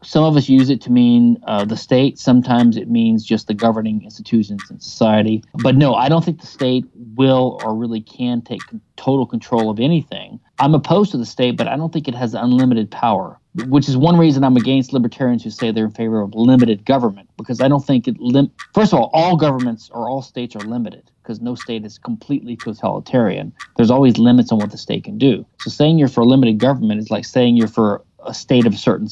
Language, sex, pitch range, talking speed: English, male, 110-140 Hz, 235 wpm